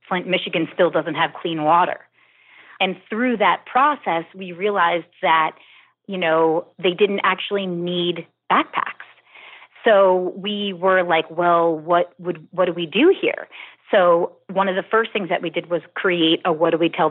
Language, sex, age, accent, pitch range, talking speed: English, female, 30-49, American, 170-200 Hz, 170 wpm